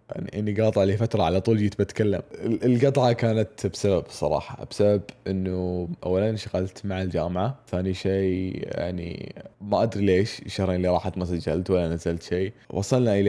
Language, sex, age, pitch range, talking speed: Arabic, male, 20-39, 95-110 Hz, 160 wpm